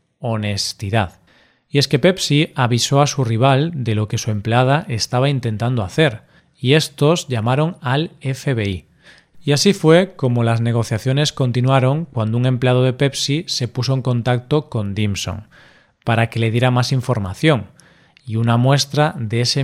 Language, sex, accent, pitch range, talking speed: Spanish, male, Spanish, 115-150 Hz, 155 wpm